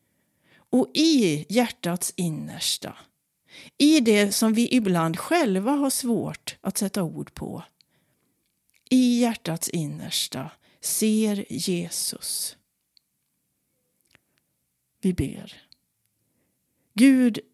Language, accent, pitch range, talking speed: Swedish, native, 170-235 Hz, 80 wpm